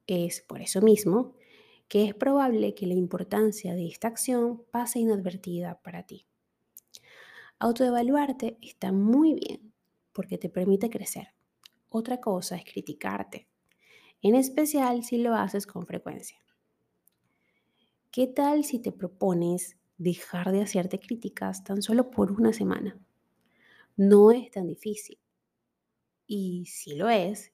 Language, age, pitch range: Spanish, 20-39, 190-240 Hz